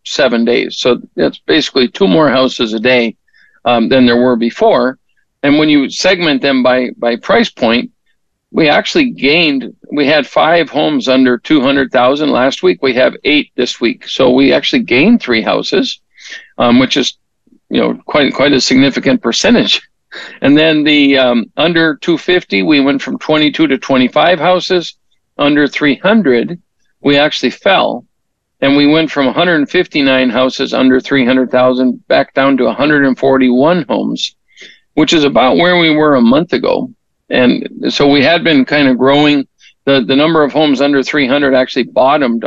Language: English